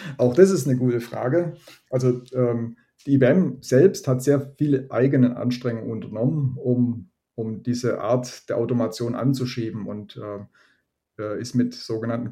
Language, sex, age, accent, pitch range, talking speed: German, male, 30-49, German, 110-130 Hz, 140 wpm